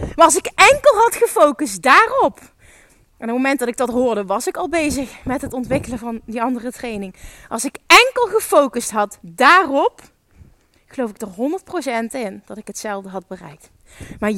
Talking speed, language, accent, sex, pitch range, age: 180 wpm, Dutch, Dutch, female, 235-335 Hz, 20-39